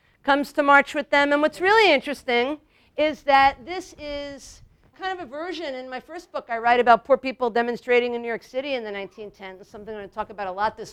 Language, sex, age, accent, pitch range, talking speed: English, female, 50-69, American, 210-275 Hz, 240 wpm